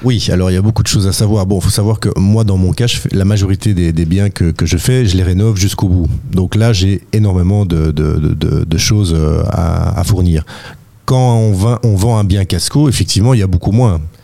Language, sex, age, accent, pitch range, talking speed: French, male, 40-59, French, 90-115 Hz, 235 wpm